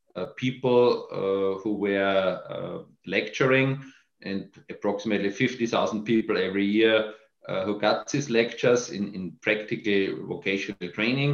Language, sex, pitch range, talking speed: German, male, 105-120 Hz, 120 wpm